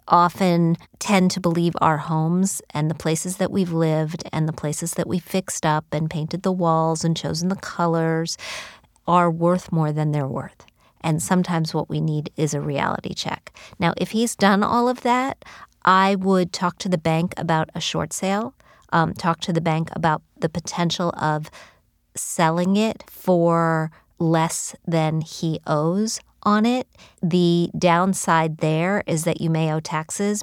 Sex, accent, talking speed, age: female, American, 170 wpm, 40-59